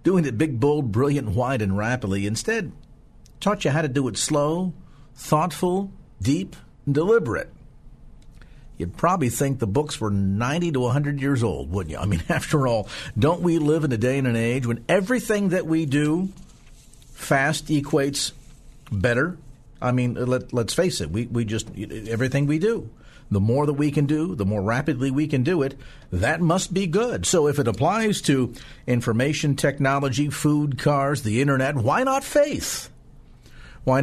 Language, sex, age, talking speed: English, male, 50-69, 175 wpm